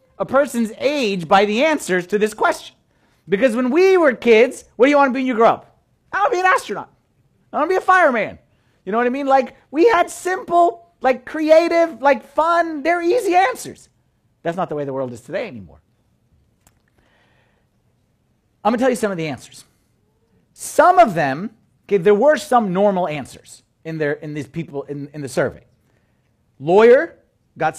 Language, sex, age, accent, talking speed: English, male, 40-59, American, 190 wpm